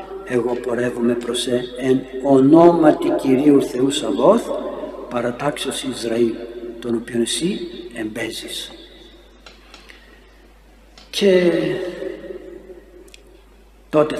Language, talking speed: Greek, 70 wpm